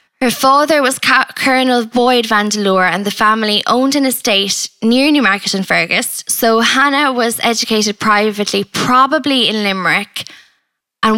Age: 10-29